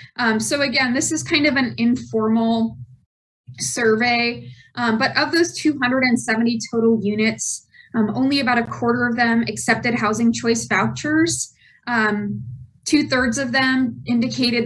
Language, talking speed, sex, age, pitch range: English, 135 wpm, female, 20-39, 205-240 Hz